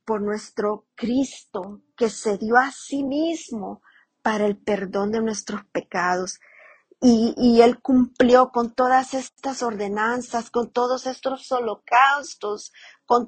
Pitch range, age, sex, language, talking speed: 200-245 Hz, 40-59, female, English, 125 wpm